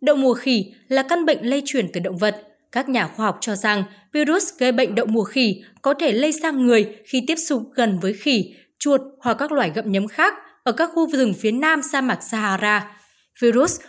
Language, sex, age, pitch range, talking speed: Vietnamese, female, 20-39, 210-290 Hz, 220 wpm